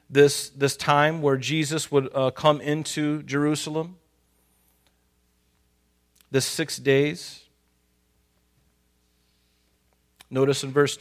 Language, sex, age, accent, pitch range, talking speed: English, male, 40-59, American, 130-170 Hz, 85 wpm